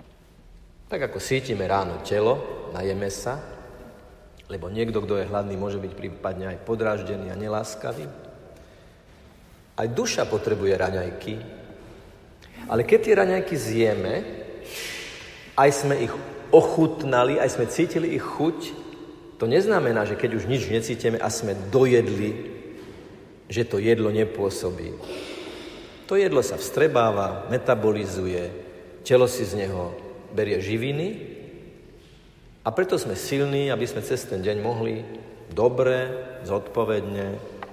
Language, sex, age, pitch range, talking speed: Slovak, male, 50-69, 100-130 Hz, 120 wpm